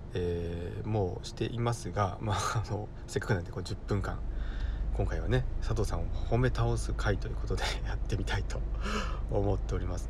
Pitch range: 90-115 Hz